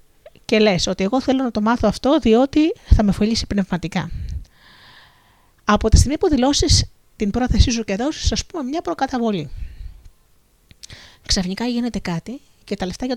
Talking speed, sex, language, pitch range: 160 wpm, female, Greek, 180-245 Hz